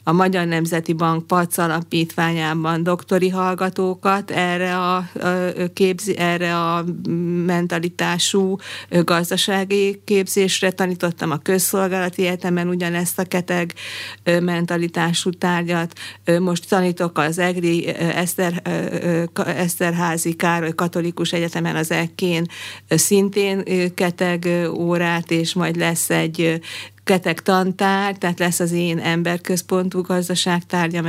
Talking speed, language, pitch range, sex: 95 wpm, Hungarian, 165-185 Hz, female